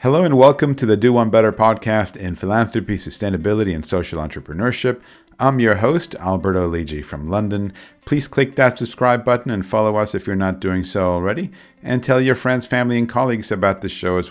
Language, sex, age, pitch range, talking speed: English, male, 50-69, 90-120 Hz, 195 wpm